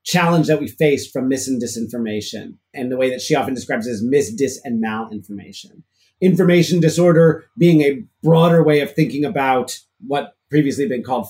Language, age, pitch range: English, 30-49, 140-180 Hz